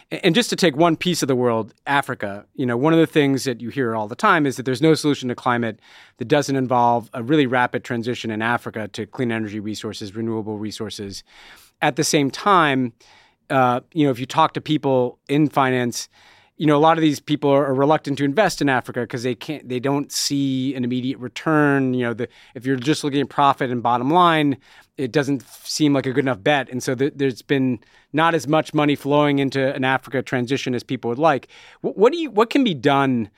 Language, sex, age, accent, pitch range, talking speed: English, male, 40-59, American, 120-150 Hz, 220 wpm